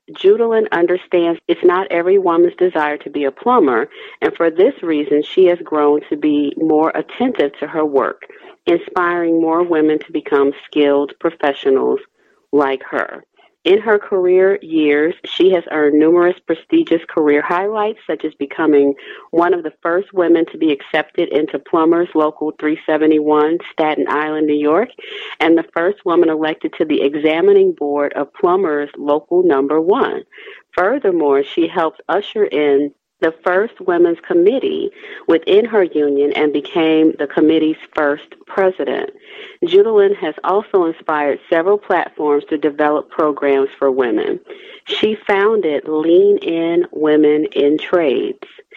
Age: 40-59